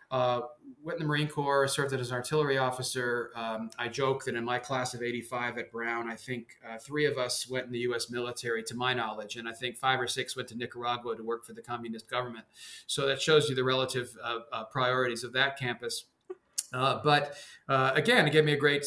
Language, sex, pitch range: English, male, 115-135 Hz